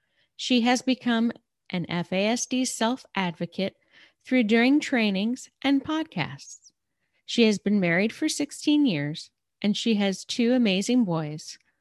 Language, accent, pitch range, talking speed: English, American, 190-255 Hz, 120 wpm